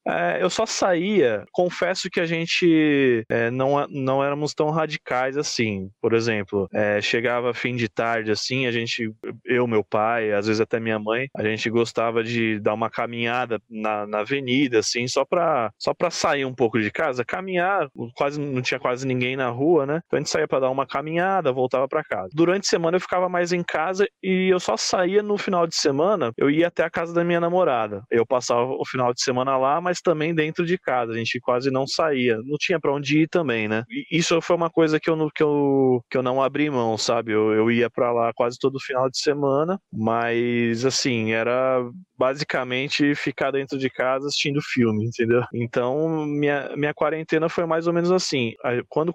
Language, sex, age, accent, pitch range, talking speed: Portuguese, male, 20-39, Brazilian, 120-160 Hz, 205 wpm